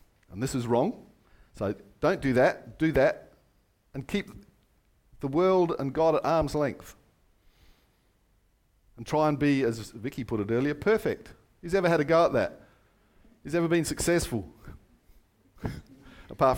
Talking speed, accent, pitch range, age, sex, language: 150 wpm, Australian, 120-175 Hz, 50-69, male, English